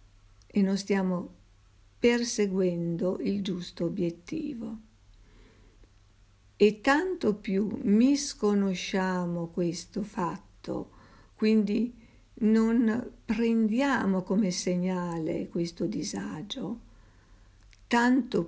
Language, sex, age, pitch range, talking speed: Italian, female, 50-69, 165-215 Hz, 70 wpm